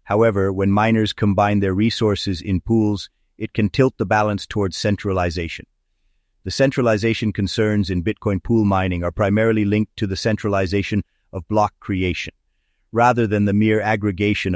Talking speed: 150 wpm